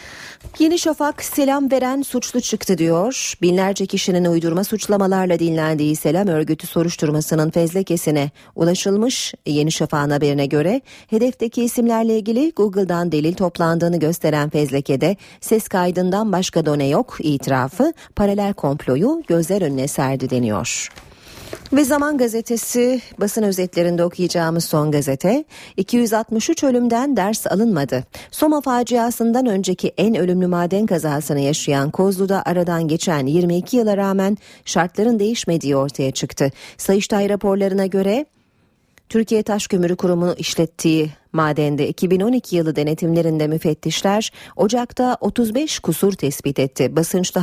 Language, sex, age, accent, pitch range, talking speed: Turkish, female, 40-59, native, 155-220 Hz, 115 wpm